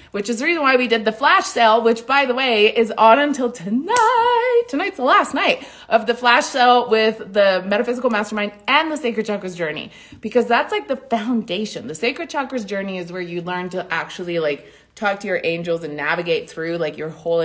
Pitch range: 180-245 Hz